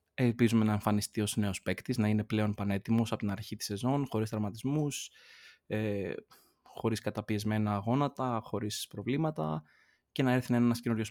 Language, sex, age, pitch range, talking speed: Greek, male, 20-39, 100-125 Hz, 150 wpm